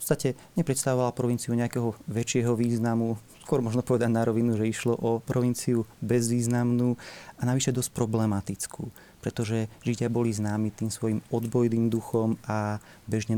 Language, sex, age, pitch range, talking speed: Slovak, male, 30-49, 110-125 Hz, 140 wpm